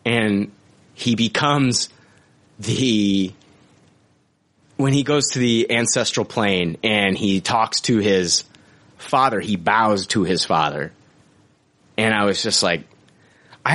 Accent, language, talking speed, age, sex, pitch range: American, English, 120 wpm, 30-49, male, 95-130 Hz